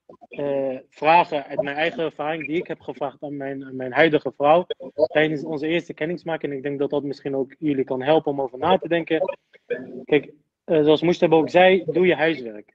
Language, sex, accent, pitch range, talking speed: Dutch, male, Dutch, 145-170 Hz, 200 wpm